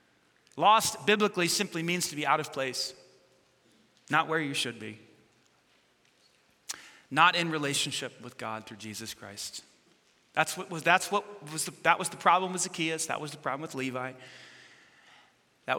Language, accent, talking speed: English, American, 160 wpm